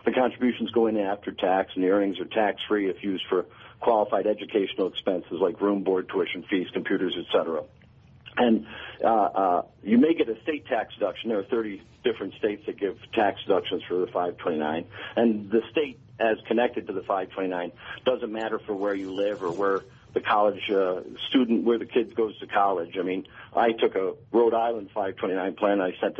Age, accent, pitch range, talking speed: 50-69, American, 100-125 Hz, 195 wpm